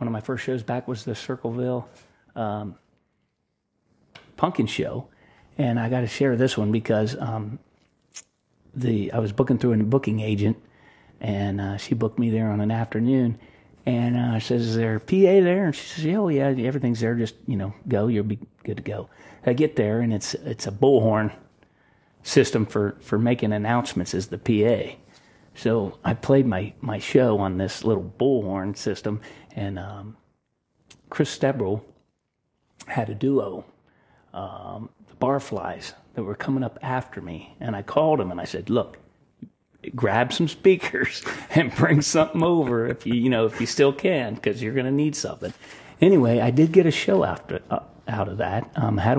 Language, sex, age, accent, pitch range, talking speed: English, male, 40-59, American, 110-135 Hz, 180 wpm